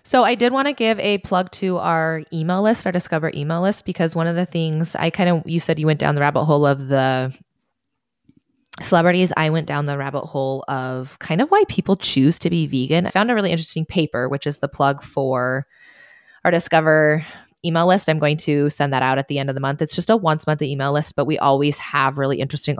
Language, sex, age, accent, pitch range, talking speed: English, female, 20-39, American, 135-170 Hz, 235 wpm